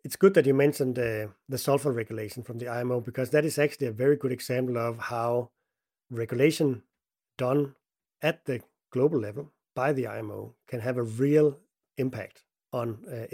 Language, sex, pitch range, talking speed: English, male, 115-140 Hz, 170 wpm